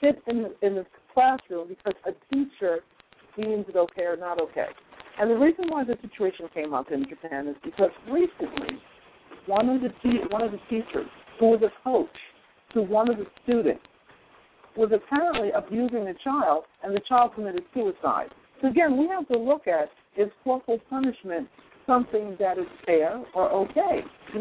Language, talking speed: English, 175 wpm